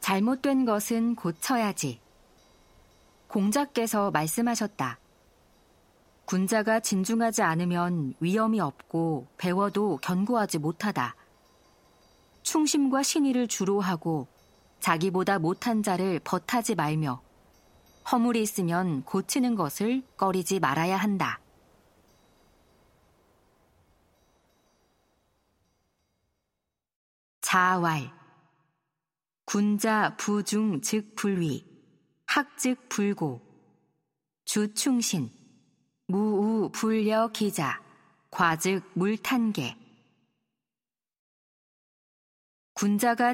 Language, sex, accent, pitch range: Korean, female, native, 160-220 Hz